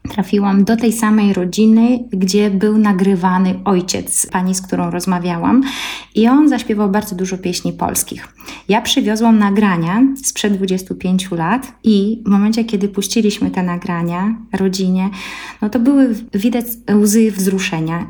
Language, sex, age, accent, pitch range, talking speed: Polish, female, 20-39, native, 190-235 Hz, 135 wpm